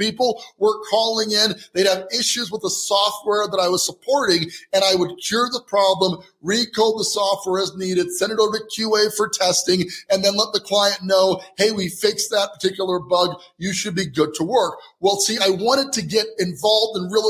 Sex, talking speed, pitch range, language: male, 205 wpm, 190-225 Hz, English